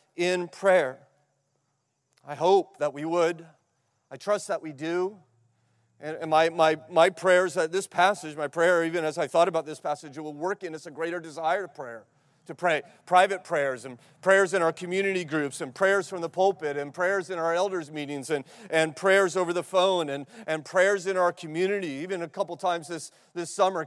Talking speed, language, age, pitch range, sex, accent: 200 wpm, English, 40-59, 155-180 Hz, male, American